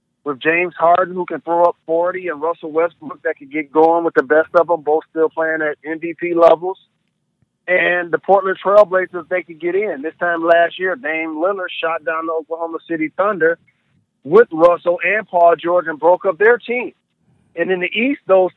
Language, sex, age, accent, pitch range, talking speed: English, male, 40-59, American, 160-205 Hz, 195 wpm